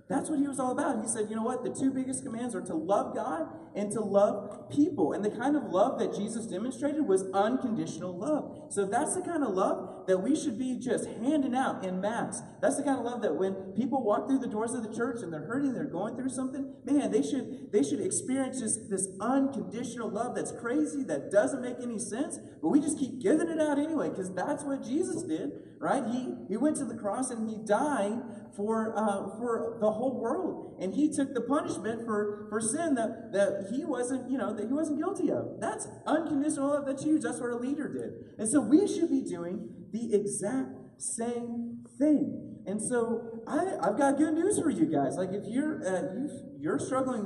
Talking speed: 220 wpm